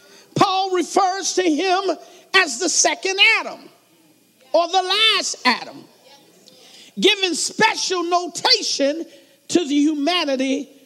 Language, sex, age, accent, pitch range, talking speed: English, male, 50-69, American, 275-370 Hz, 100 wpm